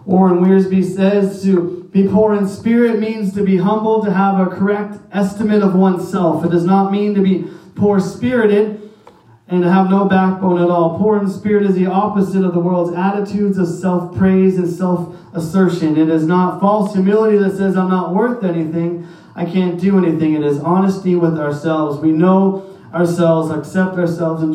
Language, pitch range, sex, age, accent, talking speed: English, 155-190 Hz, male, 30-49, American, 185 wpm